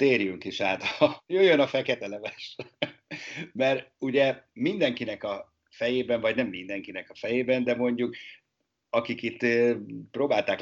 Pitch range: 100-135 Hz